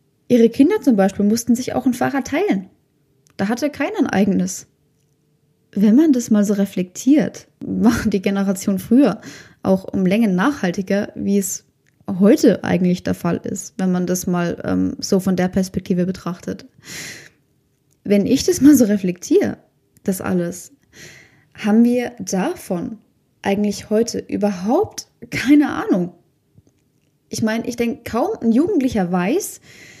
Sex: female